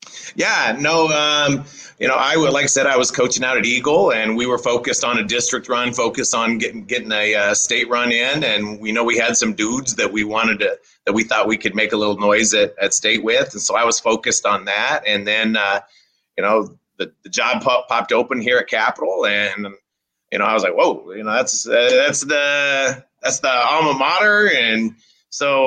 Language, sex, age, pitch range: English, male, 30-49, 100-125 Hz